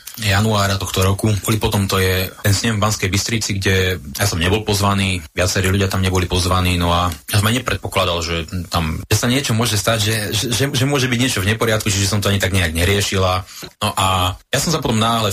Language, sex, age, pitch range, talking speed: Slovak, male, 30-49, 90-105 Hz, 225 wpm